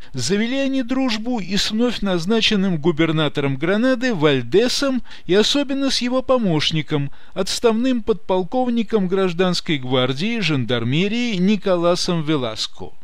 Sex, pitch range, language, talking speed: male, 160-235 Hz, Russian, 100 wpm